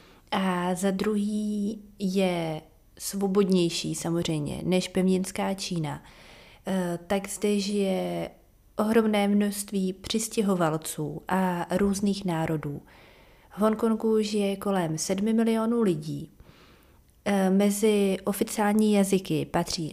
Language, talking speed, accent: Czech, 95 wpm, native